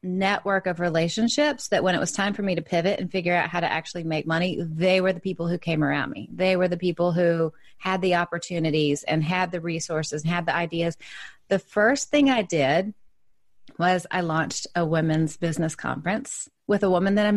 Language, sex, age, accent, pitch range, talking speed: English, female, 30-49, American, 175-220 Hz, 210 wpm